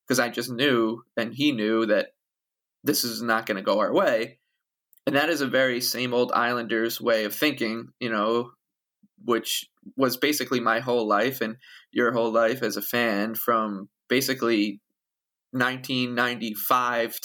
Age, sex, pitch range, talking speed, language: 20-39, male, 115-125 Hz, 165 wpm, English